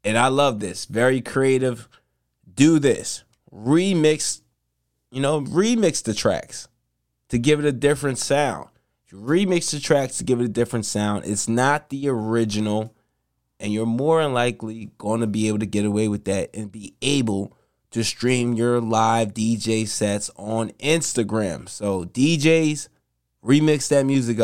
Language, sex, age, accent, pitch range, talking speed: English, male, 20-39, American, 95-135 Hz, 155 wpm